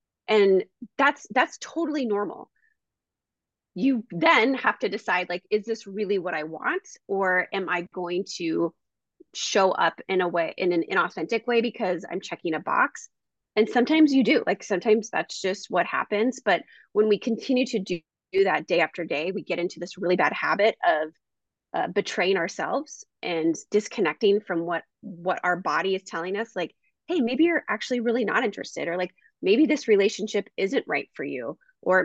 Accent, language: American, English